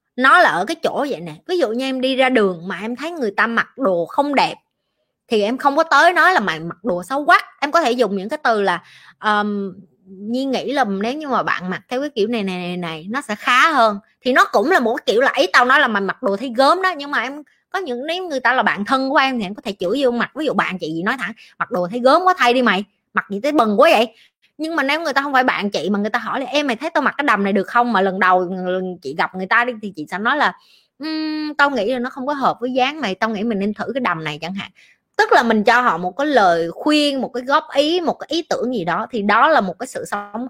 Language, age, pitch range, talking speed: Vietnamese, 20-39, 205-280 Hz, 305 wpm